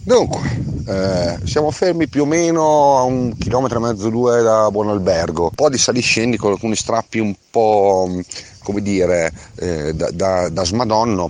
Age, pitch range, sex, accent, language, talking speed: 30-49, 90-120 Hz, male, native, Italian, 170 wpm